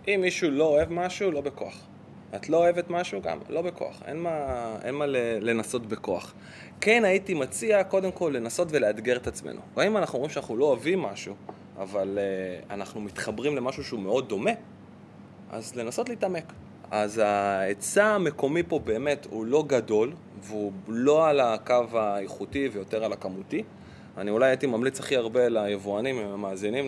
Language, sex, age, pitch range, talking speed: Hebrew, male, 20-39, 105-145 Hz, 160 wpm